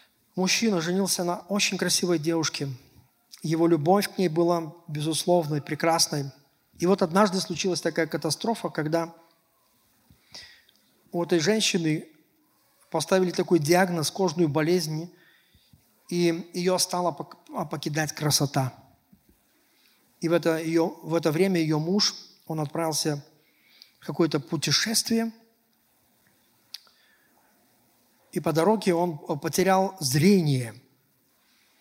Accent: native